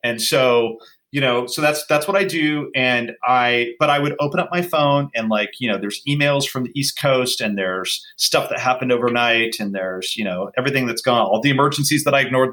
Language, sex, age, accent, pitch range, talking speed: English, male, 40-59, American, 120-150 Hz, 230 wpm